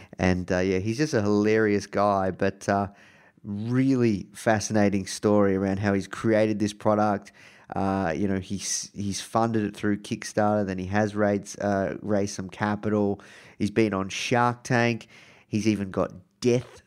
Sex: male